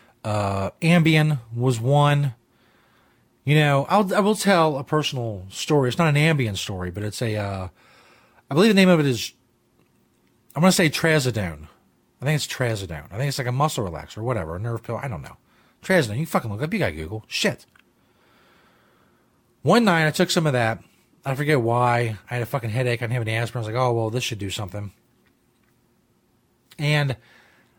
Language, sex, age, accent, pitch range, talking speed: English, male, 30-49, American, 115-155 Hz, 200 wpm